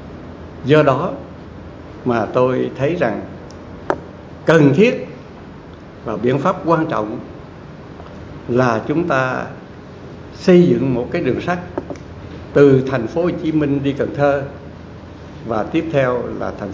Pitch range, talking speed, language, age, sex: 105-145 Hz, 130 wpm, Vietnamese, 60-79, male